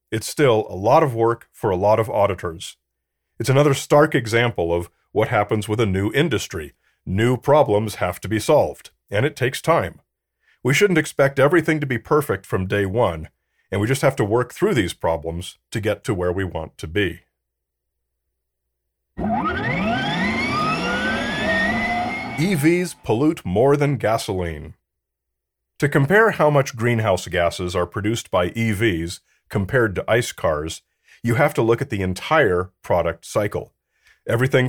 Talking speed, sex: 150 wpm, male